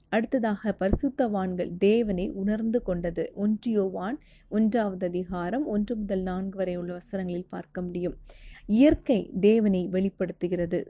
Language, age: Tamil, 30-49